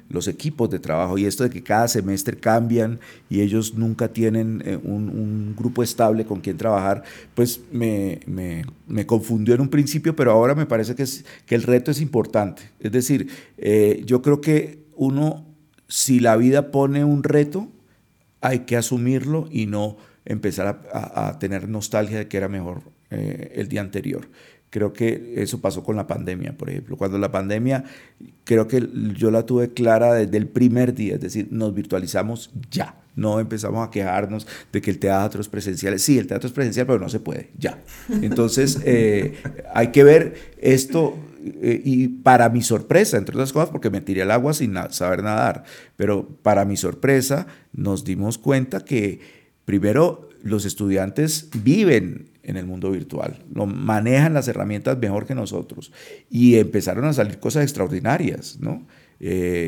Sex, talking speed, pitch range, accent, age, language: male, 175 wpm, 105-130 Hz, Venezuelan, 50-69, Spanish